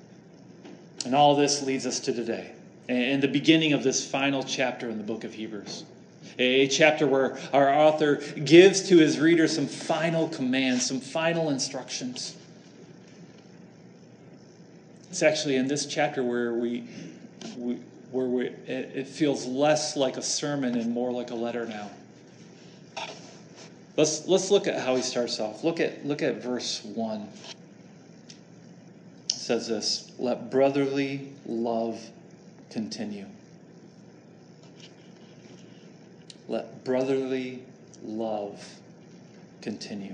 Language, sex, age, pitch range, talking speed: English, male, 30-49, 115-145 Hz, 120 wpm